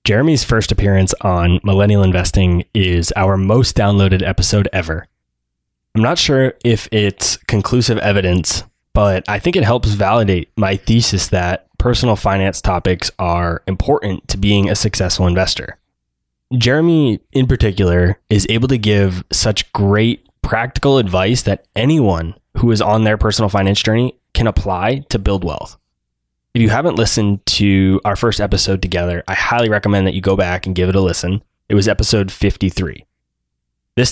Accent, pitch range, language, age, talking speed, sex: American, 90-110 Hz, English, 20-39, 155 wpm, male